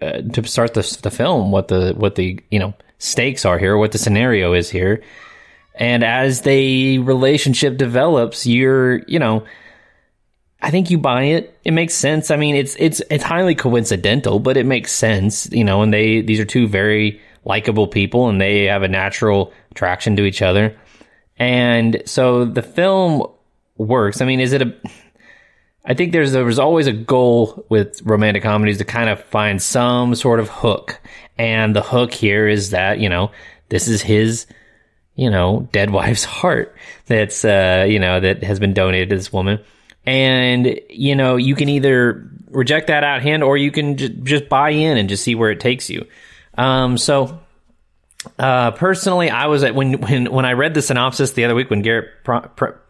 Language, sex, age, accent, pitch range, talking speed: English, male, 20-39, American, 105-130 Hz, 190 wpm